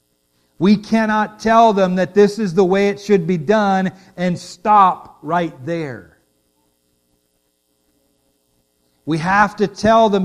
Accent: American